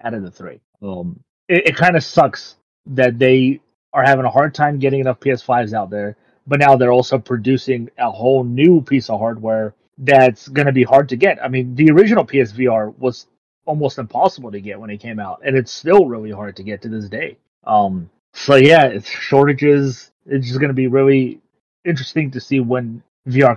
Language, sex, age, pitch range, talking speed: English, male, 30-49, 120-140 Hz, 205 wpm